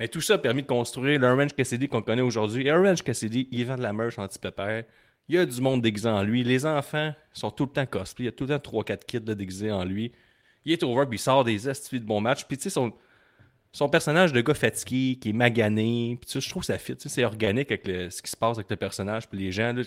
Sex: male